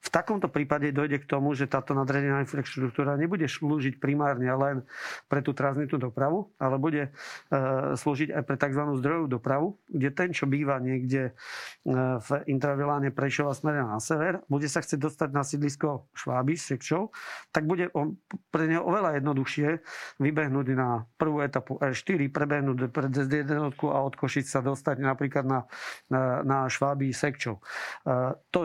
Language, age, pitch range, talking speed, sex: Slovak, 40-59, 135-150 Hz, 150 wpm, male